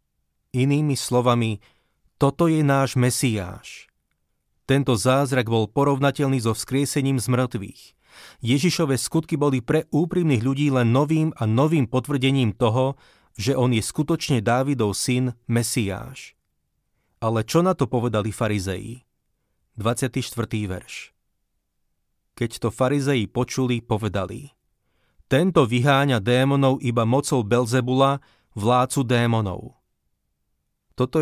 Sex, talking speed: male, 105 wpm